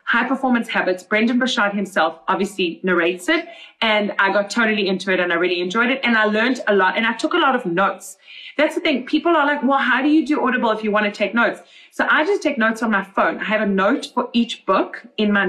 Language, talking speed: English, 260 wpm